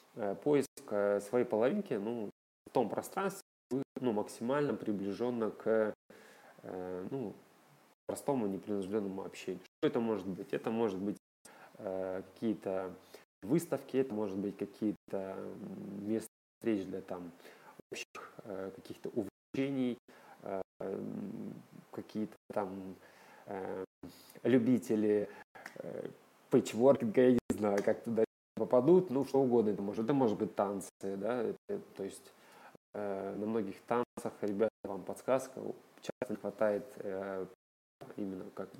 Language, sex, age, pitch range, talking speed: Russian, male, 20-39, 100-120 Hz, 115 wpm